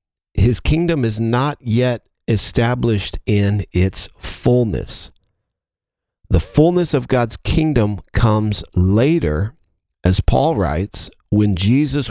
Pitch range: 95-125 Hz